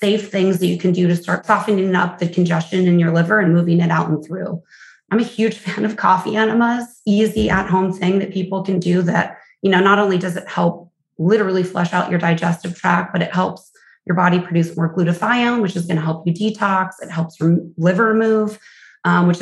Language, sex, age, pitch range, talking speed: English, female, 20-39, 170-200 Hz, 225 wpm